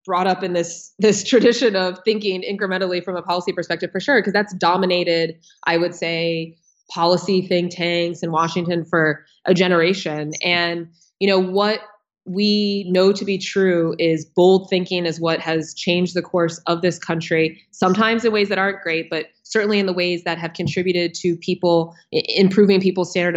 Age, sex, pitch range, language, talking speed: 20-39, female, 170-190 Hz, English, 175 wpm